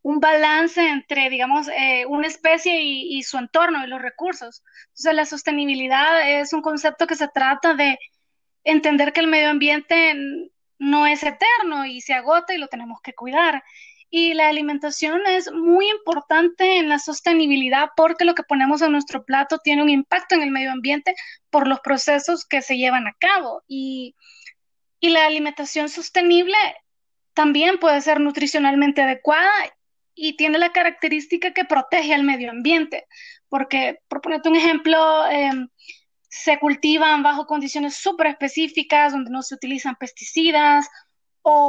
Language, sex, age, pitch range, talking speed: Spanish, female, 20-39, 280-330 Hz, 155 wpm